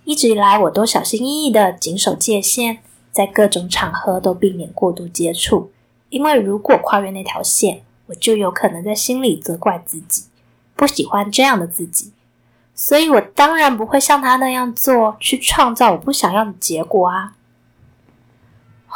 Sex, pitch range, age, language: female, 180-255 Hz, 20-39, Chinese